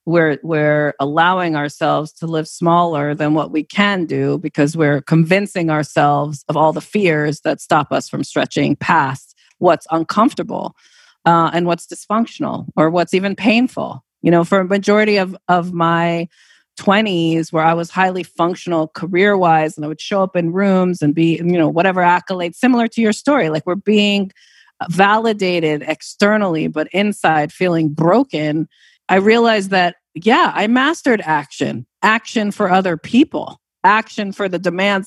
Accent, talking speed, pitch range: American, 155 wpm, 160-200 Hz